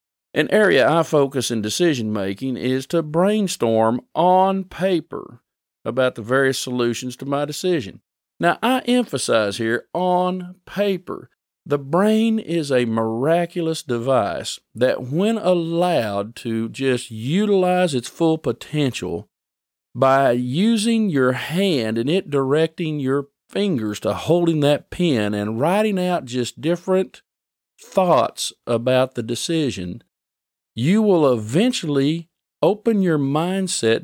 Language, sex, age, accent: English, male, 50-69, American